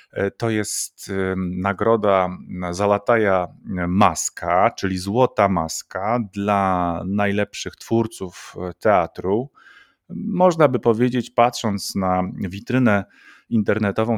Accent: native